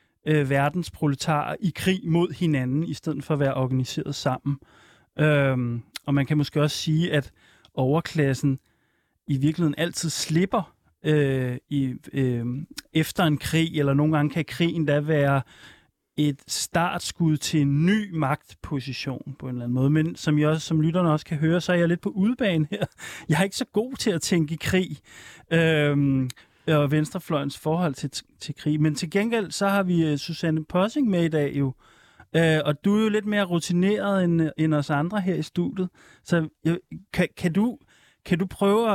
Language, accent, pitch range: Danish, native, 145-180 Hz